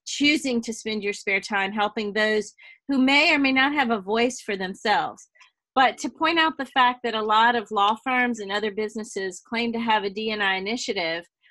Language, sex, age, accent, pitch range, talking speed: English, female, 40-59, American, 195-245 Hz, 205 wpm